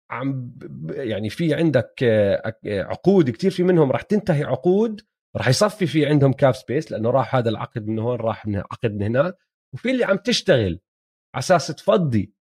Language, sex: Arabic, male